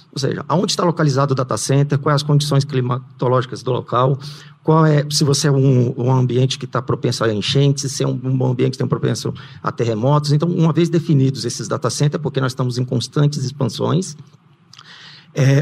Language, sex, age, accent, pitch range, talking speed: Portuguese, male, 50-69, Brazilian, 130-155 Hz, 195 wpm